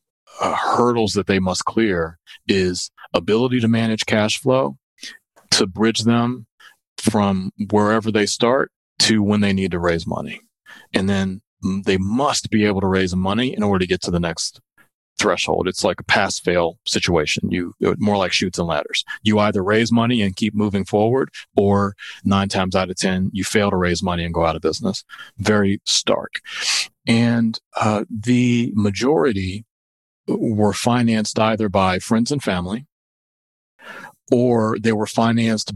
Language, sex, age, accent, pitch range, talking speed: English, male, 40-59, American, 95-110 Hz, 160 wpm